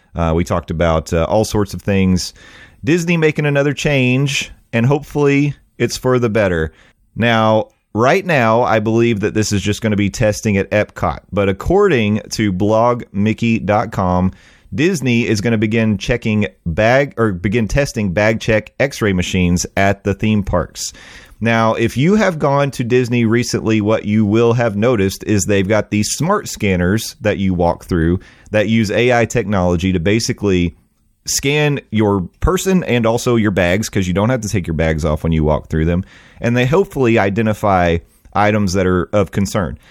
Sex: male